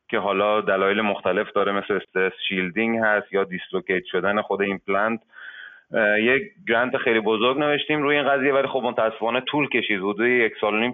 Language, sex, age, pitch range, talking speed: Persian, male, 30-49, 100-120 Hz, 165 wpm